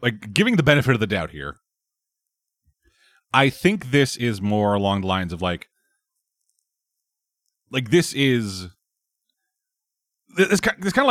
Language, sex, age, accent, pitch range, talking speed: English, male, 30-49, American, 105-150 Hz, 135 wpm